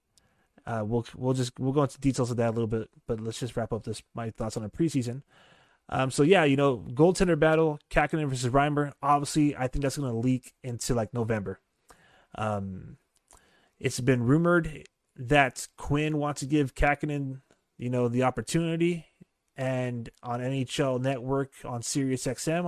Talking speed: 170 wpm